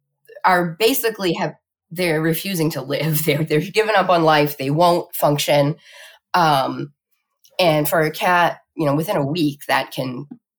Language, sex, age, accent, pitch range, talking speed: English, female, 10-29, American, 145-180 Hz, 160 wpm